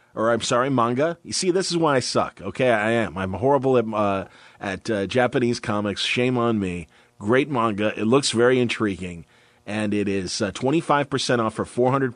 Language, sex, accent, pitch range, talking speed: English, male, American, 105-130 Hz, 185 wpm